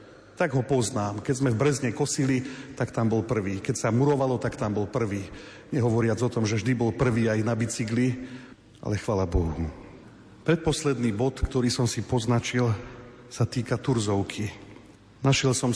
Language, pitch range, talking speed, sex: Slovak, 105-130 Hz, 165 wpm, male